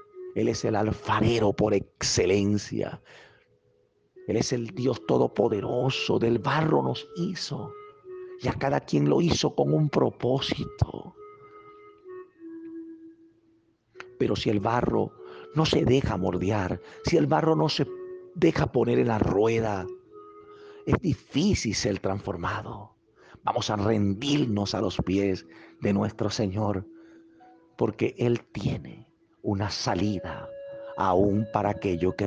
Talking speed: 120 wpm